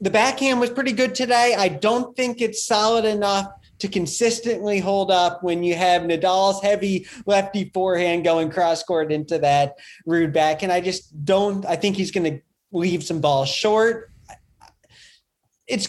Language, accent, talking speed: English, American, 160 wpm